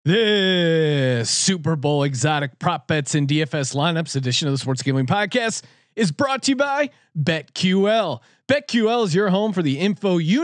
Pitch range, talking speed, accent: 145-205 Hz, 165 wpm, American